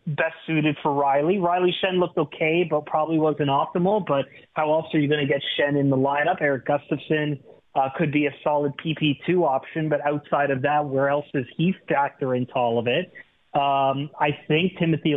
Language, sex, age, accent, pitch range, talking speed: English, male, 30-49, American, 135-165 Hz, 200 wpm